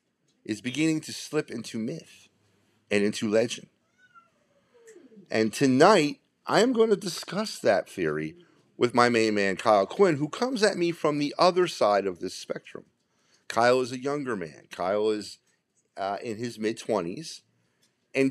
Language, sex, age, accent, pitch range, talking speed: English, male, 40-59, American, 100-145 Hz, 155 wpm